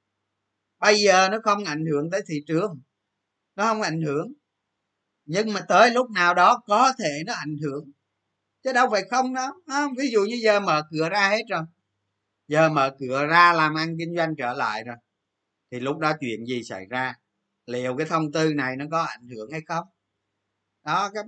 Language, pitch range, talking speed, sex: Vietnamese, 120-180 Hz, 195 wpm, male